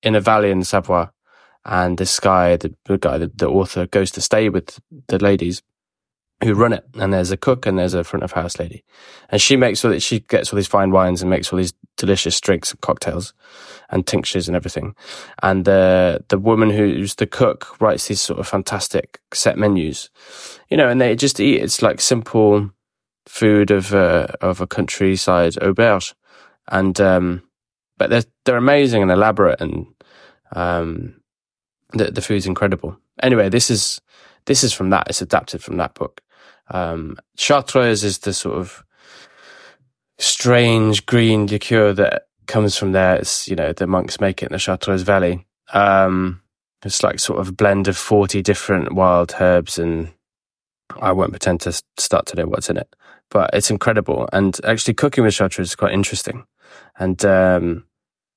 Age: 20-39